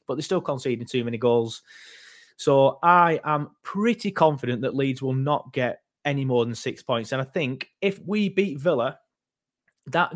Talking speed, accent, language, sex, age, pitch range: 175 wpm, British, English, male, 20-39, 120-150 Hz